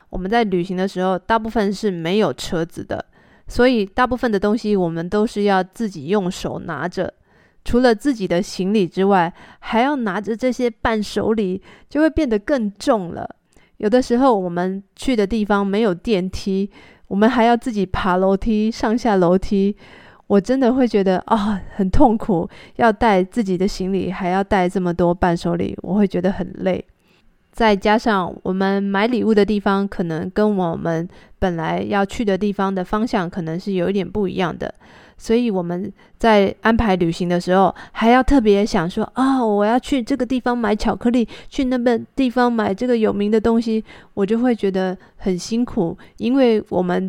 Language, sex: Chinese, female